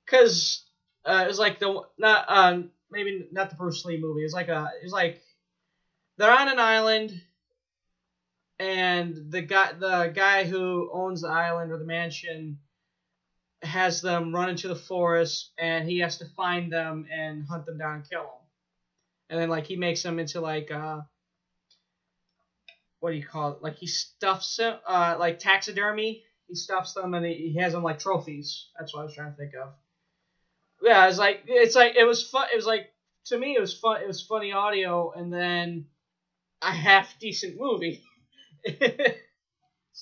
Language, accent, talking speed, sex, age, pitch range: English, American, 180 wpm, male, 20-39, 165-205 Hz